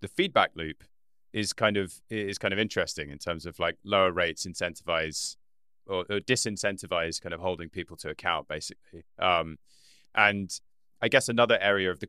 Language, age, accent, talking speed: English, 30-49, British, 175 wpm